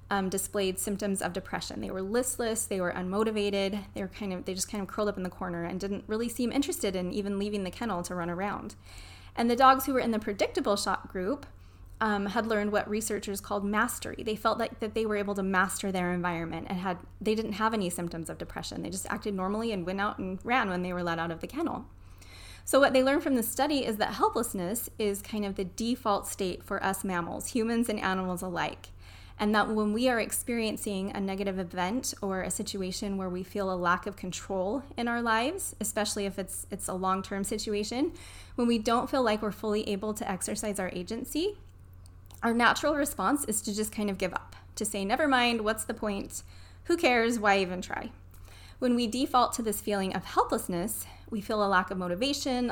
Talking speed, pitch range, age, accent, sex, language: 215 wpm, 185-225 Hz, 20-39, American, female, English